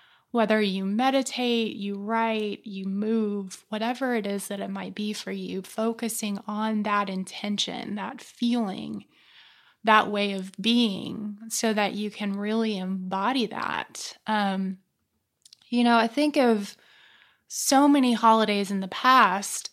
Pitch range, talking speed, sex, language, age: 200-230 Hz, 135 wpm, female, English, 20-39